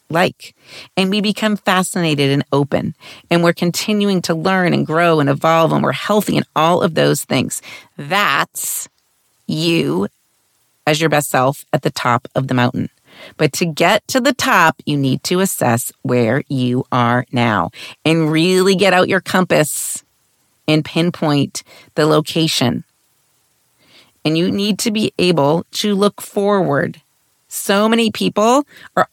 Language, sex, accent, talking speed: English, female, American, 150 wpm